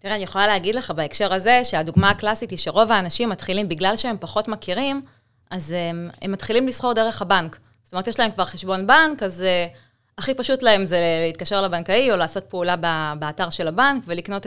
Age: 20-39